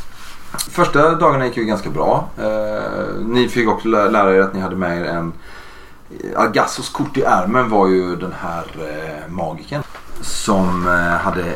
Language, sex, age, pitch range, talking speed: Swedish, male, 30-49, 95-125 Hz, 160 wpm